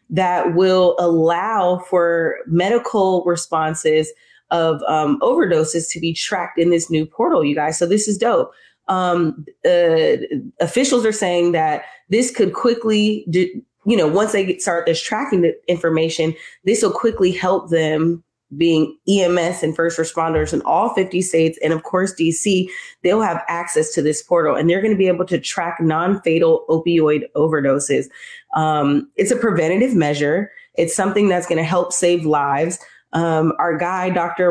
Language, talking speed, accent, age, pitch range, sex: English, 160 wpm, American, 20-39, 160-190 Hz, female